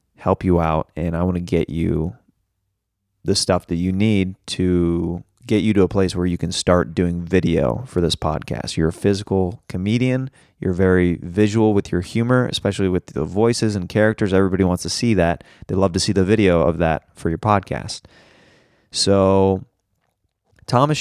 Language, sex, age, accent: English, male, 20-39, American